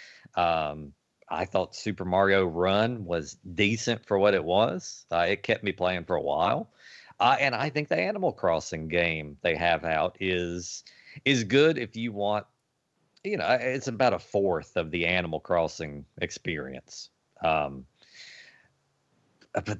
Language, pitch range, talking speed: English, 90-120 Hz, 150 wpm